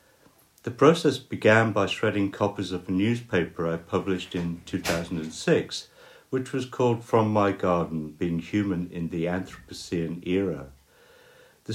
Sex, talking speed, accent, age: male, 135 wpm, British, 60-79